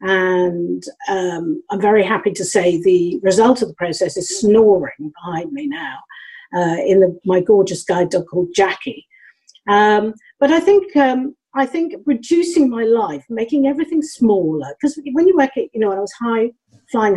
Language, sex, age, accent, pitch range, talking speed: English, female, 50-69, British, 190-275 Hz, 180 wpm